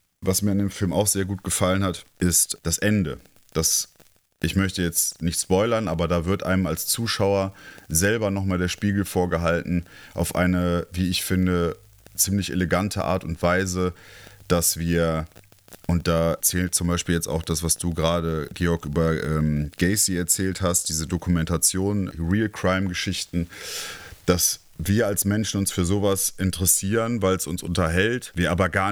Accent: German